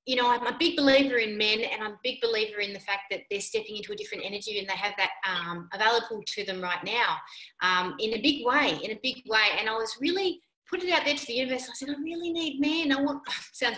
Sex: female